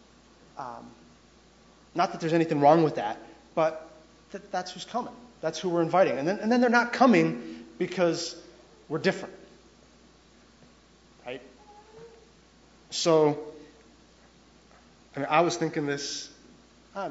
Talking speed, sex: 115 wpm, male